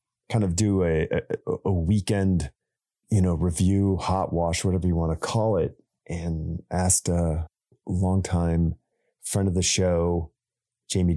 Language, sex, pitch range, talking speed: English, male, 85-105 Hz, 145 wpm